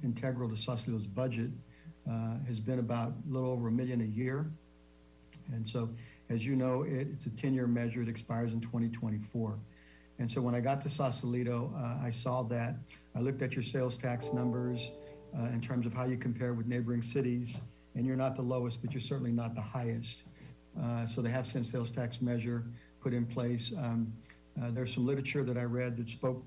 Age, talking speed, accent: 60-79, 200 wpm, American